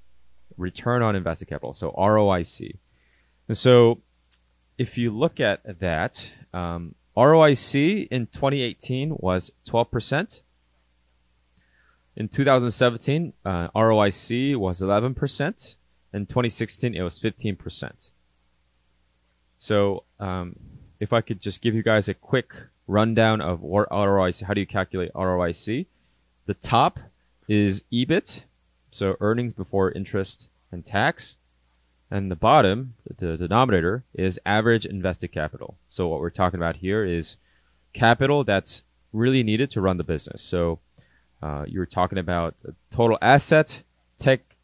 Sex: male